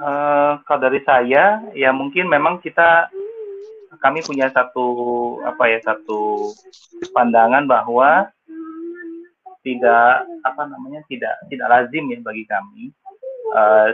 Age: 30-49